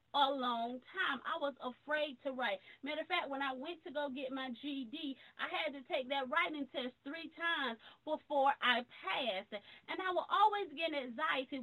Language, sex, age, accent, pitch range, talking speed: English, female, 30-49, American, 275-360 Hz, 190 wpm